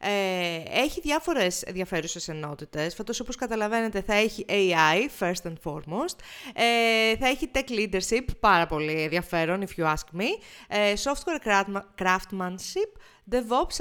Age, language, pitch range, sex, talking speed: 30-49, Greek, 180-255 Hz, female, 130 wpm